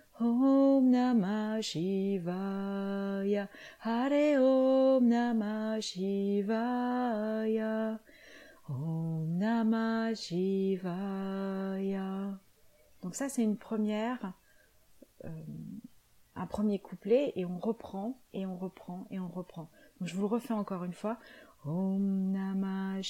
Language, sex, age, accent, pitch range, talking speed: French, female, 30-49, French, 190-230 Hz, 95 wpm